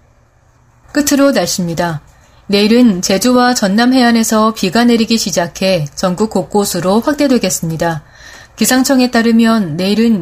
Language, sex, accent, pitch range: Korean, female, native, 180-245 Hz